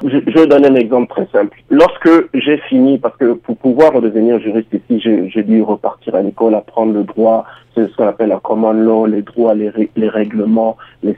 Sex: male